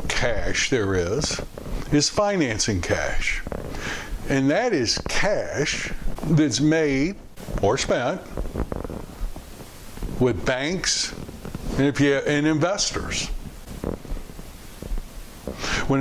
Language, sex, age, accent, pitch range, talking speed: English, male, 60-79, American, 120-155 Hz, 80 wpm